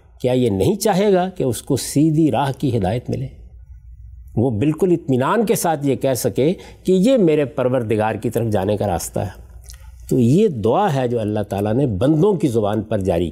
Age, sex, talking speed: 50-69, male, 200 wpm